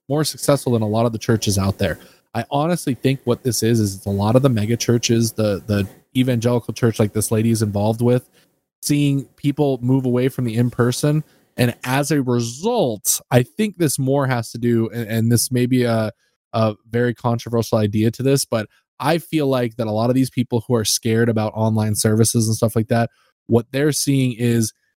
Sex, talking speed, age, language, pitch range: male, 210 wpm, 20-39, English, 110-135 Hz